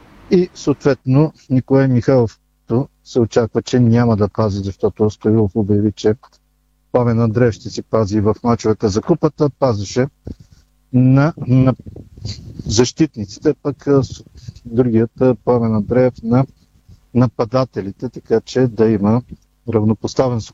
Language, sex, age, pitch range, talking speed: Bulgarian, male, 50-69, 115-140 Hz, 110 wpm